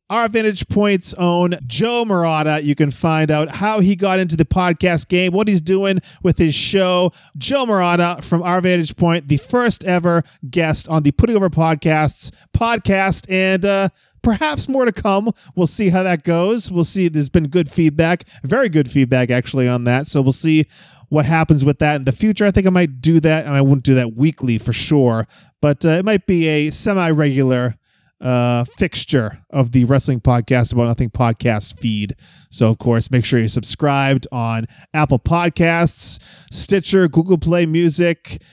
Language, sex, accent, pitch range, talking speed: English, male, American, 140-190 Hz, 185 wpm